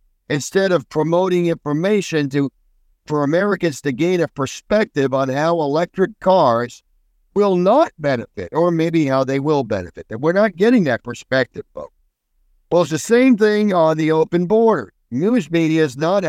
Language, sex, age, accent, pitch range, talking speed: English, male, 50-69, American, 140-185 Hz, 160 wpm